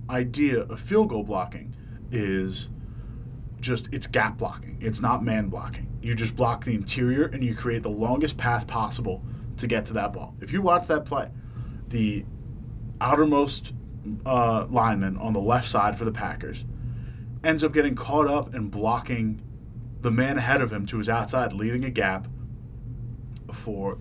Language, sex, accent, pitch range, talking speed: English, male, American, 115-130 Hz, 165 wpm